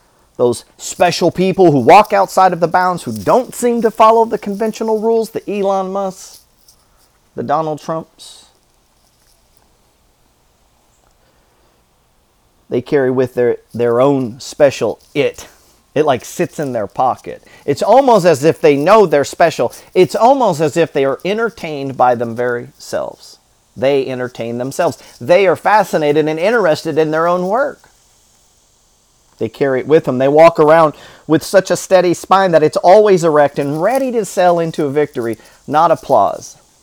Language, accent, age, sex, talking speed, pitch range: English, American, 40-59, male, 155 wpm, 135-195 Hz